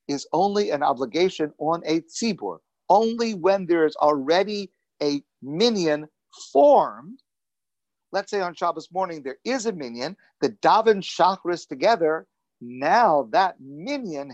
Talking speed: 130 wpm